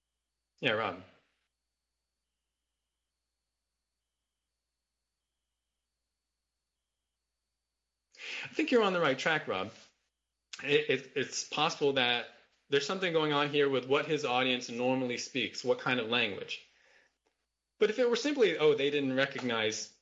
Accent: American